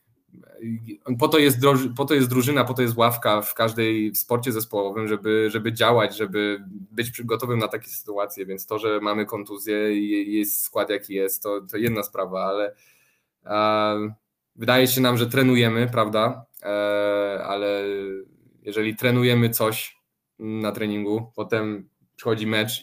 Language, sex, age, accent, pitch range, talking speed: Polish, male, 20-39, native, 105-125 Hz, 140 wpm